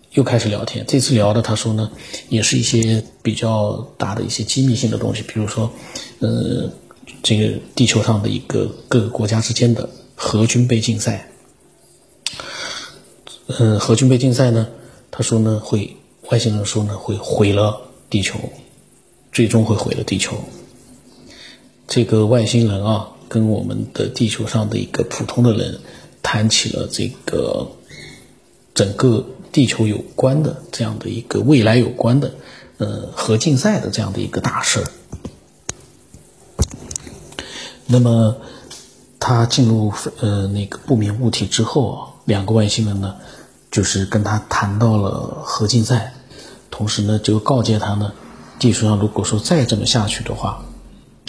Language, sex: Chinese, male